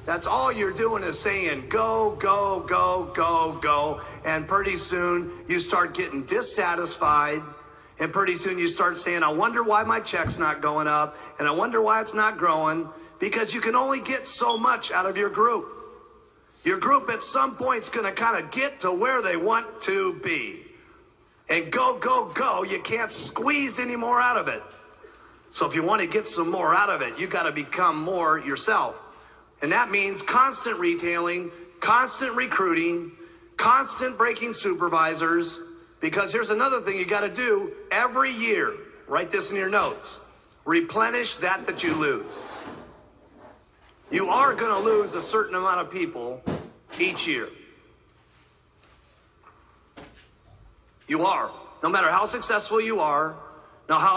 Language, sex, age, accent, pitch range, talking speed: English, male, 40-59, American, 170-255 Hz, 165 wpm